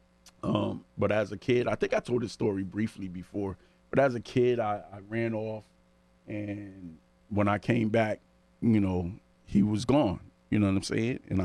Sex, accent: male, American